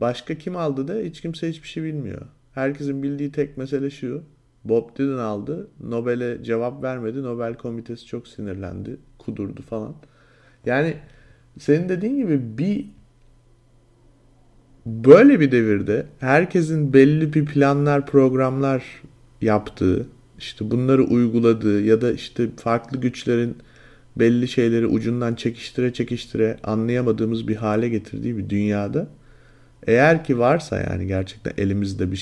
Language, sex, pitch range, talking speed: Turkish, male, 110-135 Hz, 125 wpm